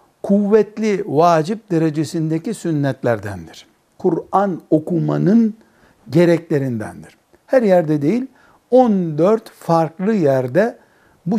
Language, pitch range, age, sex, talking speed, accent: Turkish, 145-195 Hz, 60-79, male, 75 wpm, native